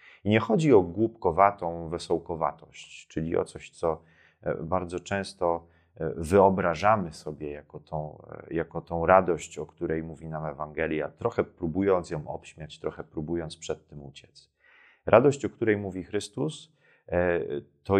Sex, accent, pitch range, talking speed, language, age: male, native, 80-100 Hz, 125 wpm, Polish, 30-49